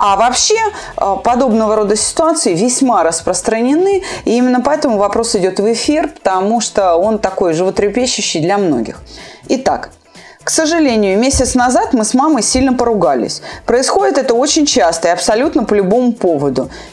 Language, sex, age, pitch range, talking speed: Russian, female, 30-49, 185-270 Hz, 140 wpm